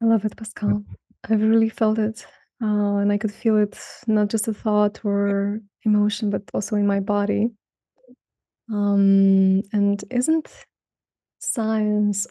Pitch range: 205-225 Hz